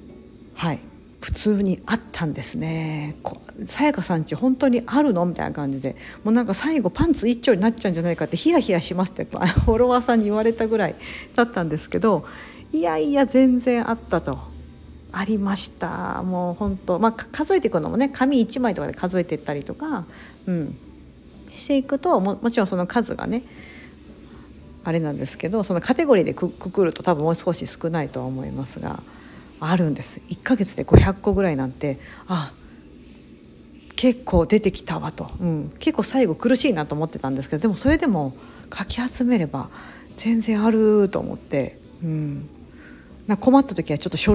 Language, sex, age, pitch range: Japanese, female, 50-69, 155-230 Hz